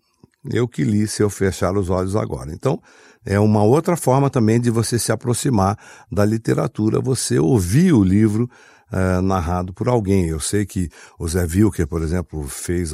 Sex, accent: male, Brazilian